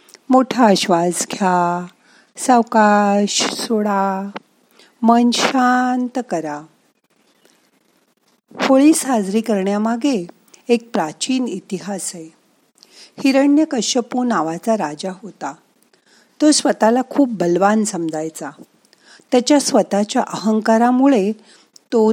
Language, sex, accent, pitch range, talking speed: Marathi, female, native, 185-245 Hz, 70 wpm